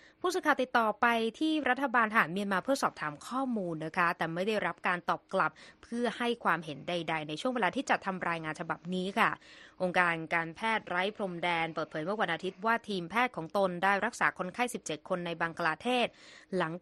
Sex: female